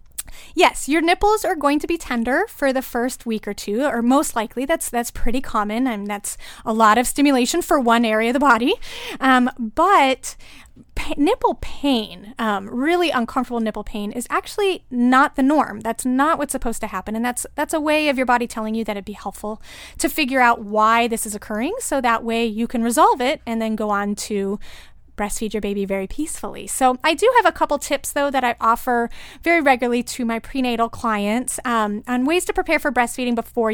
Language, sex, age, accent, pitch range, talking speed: English, female, 30-49, American, 225-290 Hz, 210 wpm